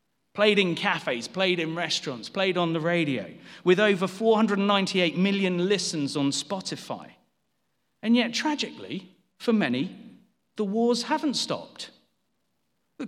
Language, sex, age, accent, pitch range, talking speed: English, male, 40-59, British, 200-240 Hz, 125 wpm